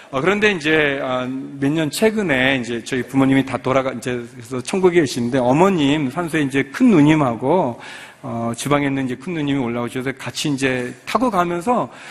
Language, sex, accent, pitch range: Korean, male, native, 130-195 Hz